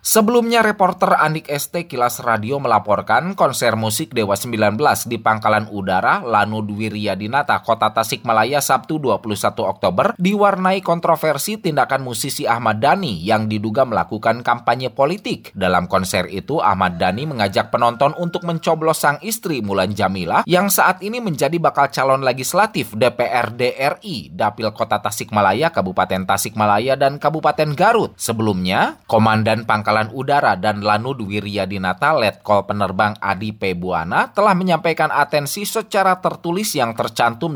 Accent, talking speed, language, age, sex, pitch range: native, 130 wpm, Indonesian, 20-39, male, 105-165 Hz